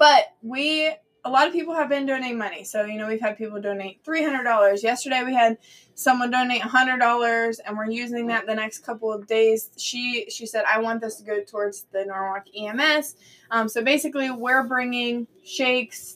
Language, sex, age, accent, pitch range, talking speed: English, female, 20-39, American, 215-250 Hz, 190 wpm